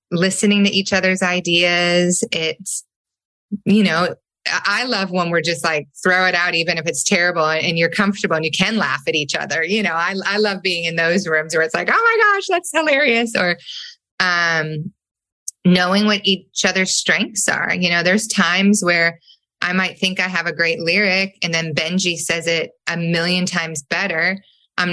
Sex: female